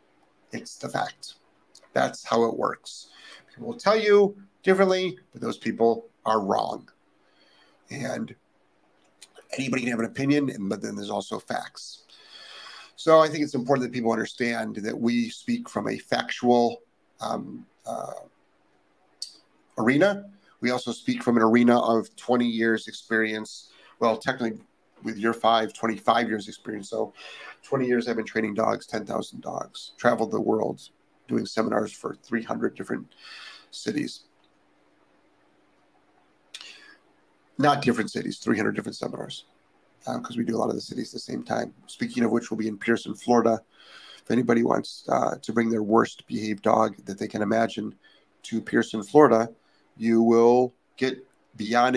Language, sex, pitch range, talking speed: English, male, 110-135 Hz, 150 wpm